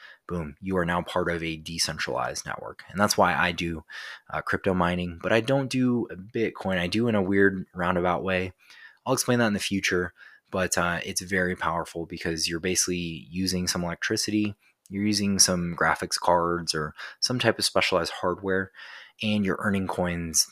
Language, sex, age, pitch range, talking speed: English, male, 20-39, 85-100 Hz, 180 wpm